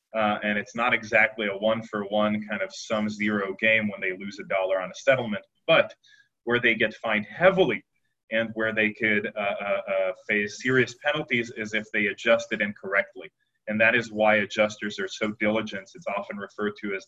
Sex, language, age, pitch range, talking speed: male, English, 30-49, 105-125 Hz, 195 wpm